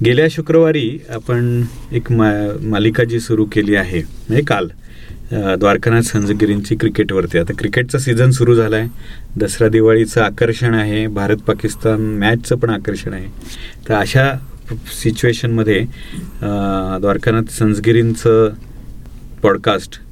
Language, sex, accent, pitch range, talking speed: Marathi, male, native, 105-120 Hz, 105 wpm